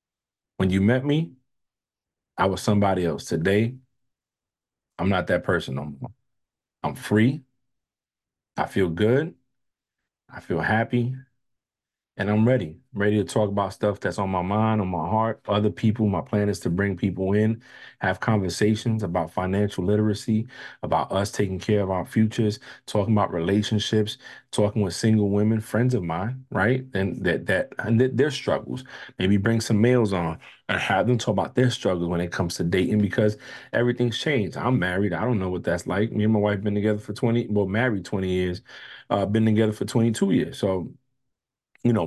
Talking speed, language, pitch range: 180 wpm, English, 100-125 Hz